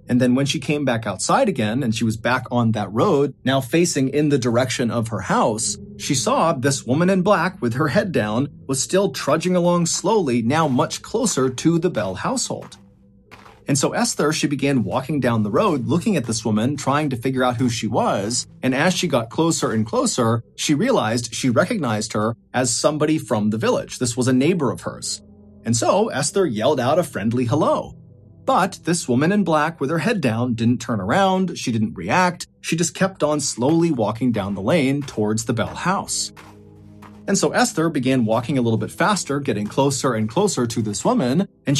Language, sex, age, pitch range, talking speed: English, male, 30-49, 115-165 Hz, 200 wpm